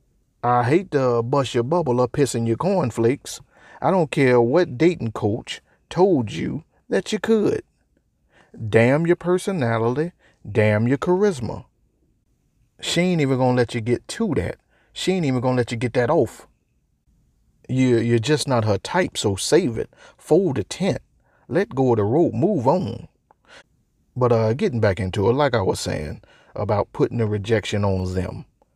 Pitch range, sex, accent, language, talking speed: 110-140 Hz, male, American, English, 165 wpm